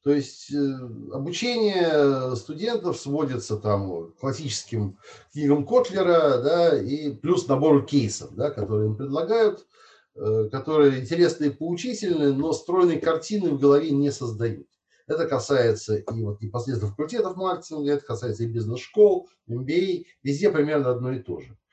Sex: male